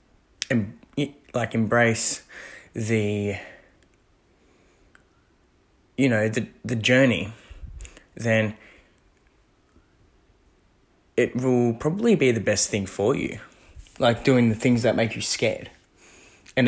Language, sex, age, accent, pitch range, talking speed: English, male, 10-29, Australian, 105-120 Hz, 100 wpm